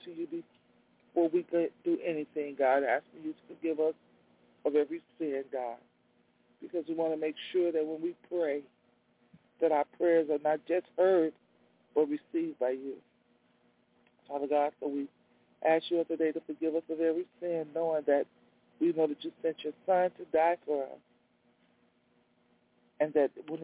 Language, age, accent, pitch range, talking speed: English, 40-59, American, 145-170 Hz, 175 wpm